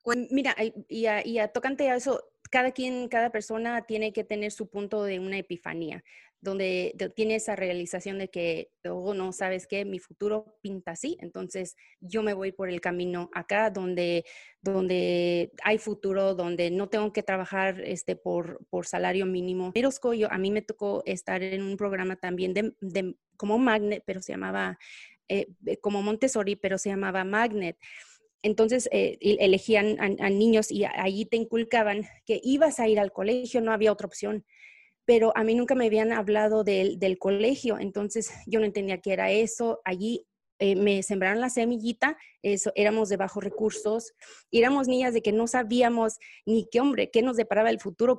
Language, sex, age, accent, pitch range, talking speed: Spanish, female, 30-49, Mexican, 190-230 Hz, 180 wpm